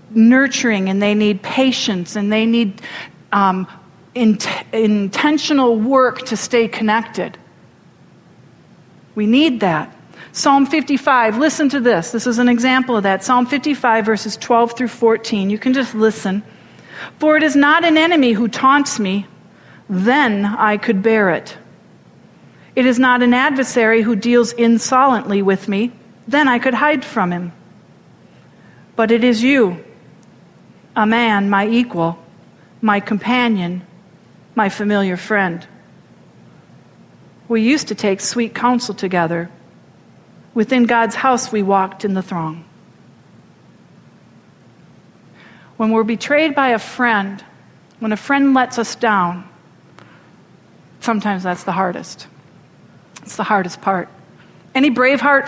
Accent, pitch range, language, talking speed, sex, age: American, 195-250 Hz, English, 130 wpm, female, 40-59